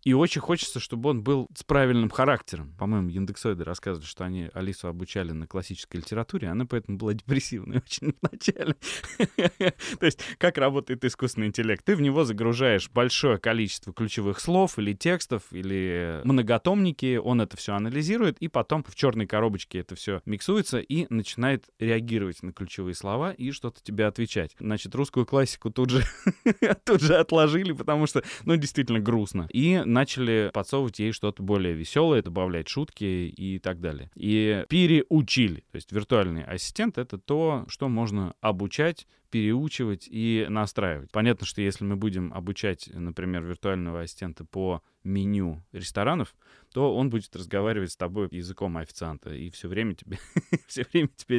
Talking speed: 150 wpm